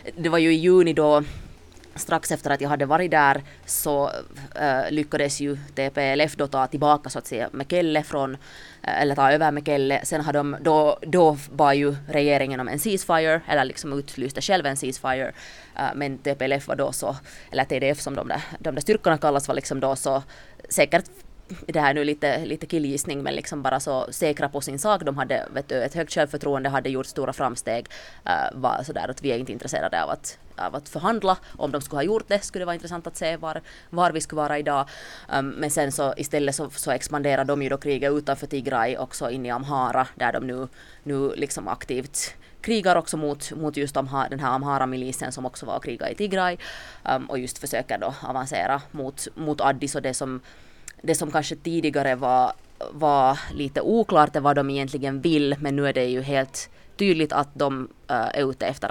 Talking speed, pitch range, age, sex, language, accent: 200 wpm, 135-155 Hz, 20-39, female, English, Finnish